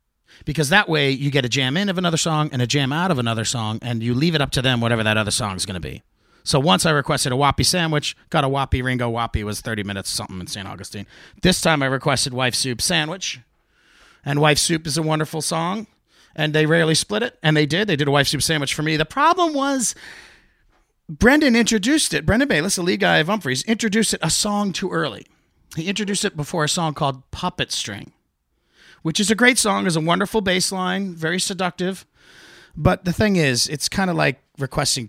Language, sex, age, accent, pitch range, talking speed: English, male, 40-59, American, 125-185 Hz, 225 wpm